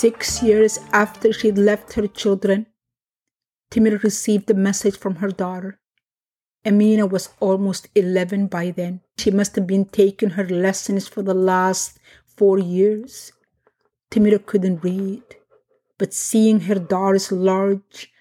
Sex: female